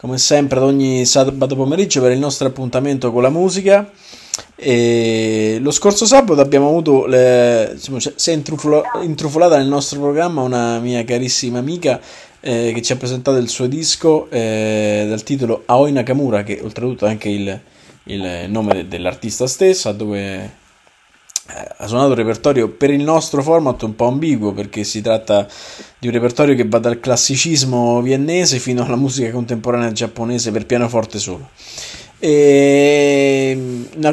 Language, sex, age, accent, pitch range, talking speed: Italian, male, 20-39, native, 115-145 Hz, 155 wpm